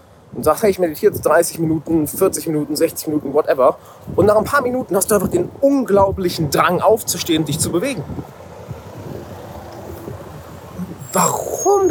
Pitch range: 125-190 Hz